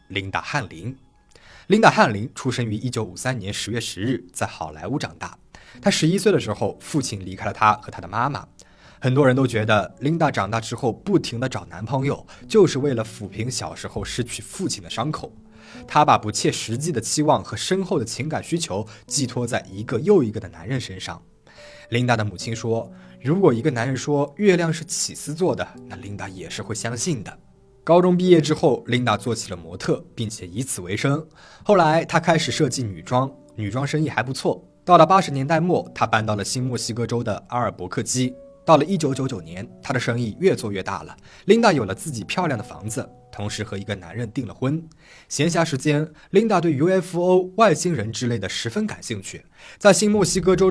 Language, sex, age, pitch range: Chinese, male, 20-39, 105-150 Hz